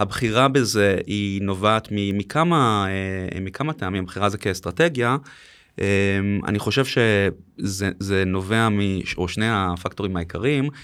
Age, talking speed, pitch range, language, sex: 20-39, 95 wpm, 95-120 Hz, Hebrew, male